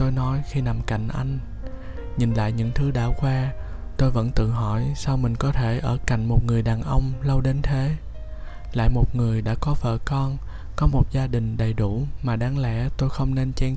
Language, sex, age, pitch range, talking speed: Vietnamese, male, 20-39, 110-130 Hz, 215 wpm